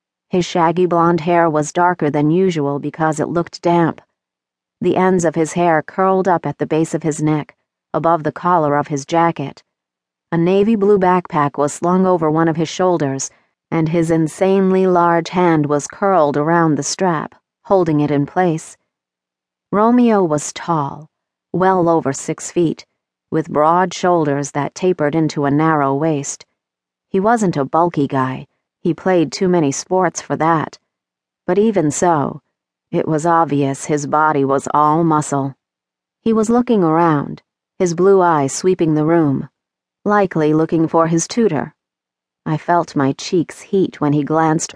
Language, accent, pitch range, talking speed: English, American, 145-180 Hz, 160 wpm